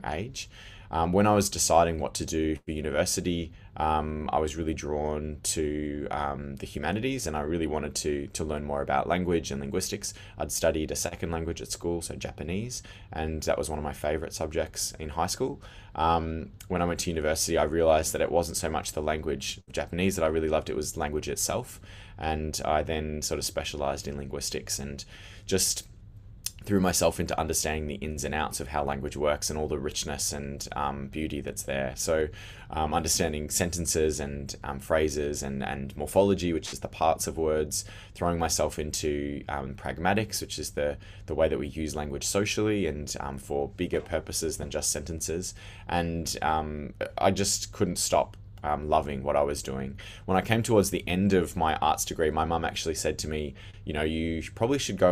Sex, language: male, English